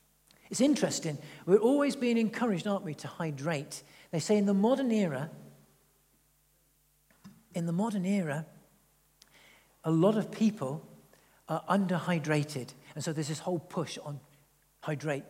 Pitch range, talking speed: 145-185 Hz, 135 wpm